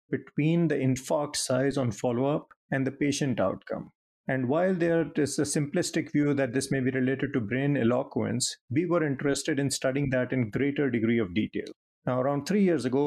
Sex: male